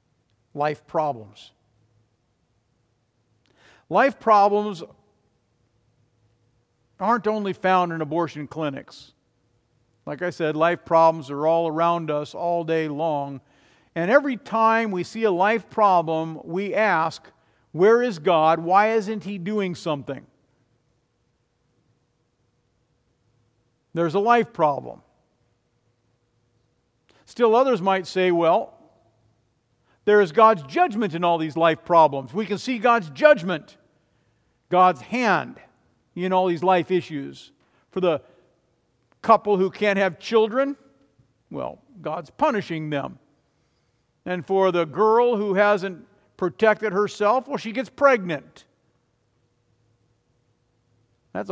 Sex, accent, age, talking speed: male, American, 50-69, 110 wpm